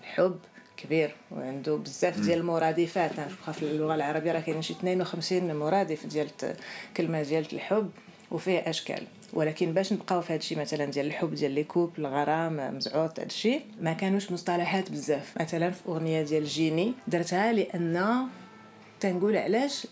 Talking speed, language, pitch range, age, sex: 145 wpm, Arabic, 165-210 Hz, 30-49, female